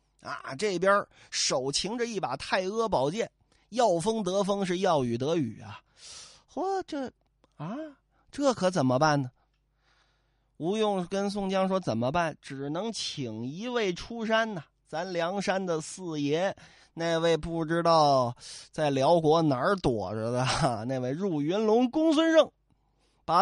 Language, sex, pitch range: Chinese, male, 150-240 Hz